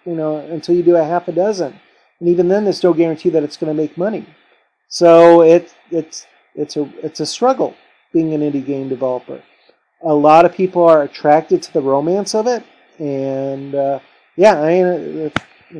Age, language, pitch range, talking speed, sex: 40-59, English, 145-180 Hz, 185 wpm, male